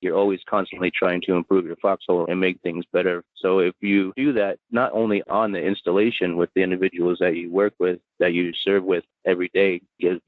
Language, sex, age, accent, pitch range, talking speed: English, male, 30-49, American, 90-105 Hz, 210 wpm